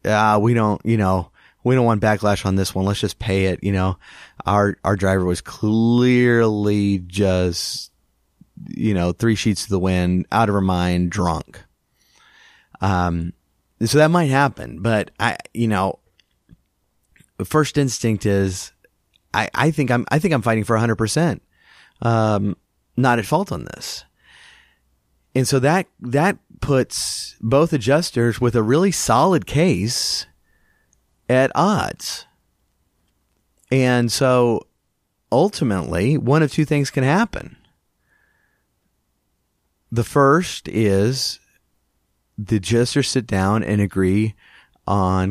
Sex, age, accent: male, 30-49, American